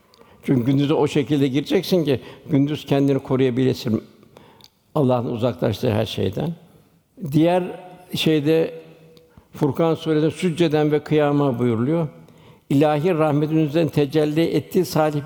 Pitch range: 140-160 Hz